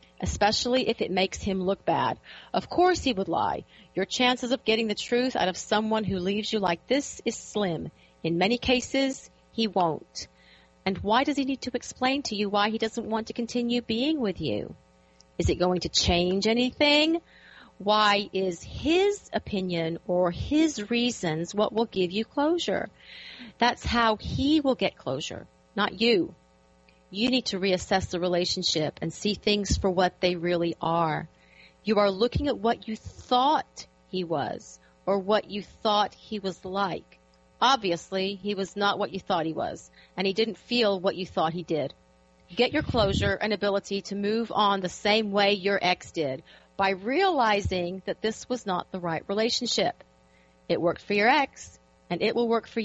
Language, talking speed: English, 180 wpm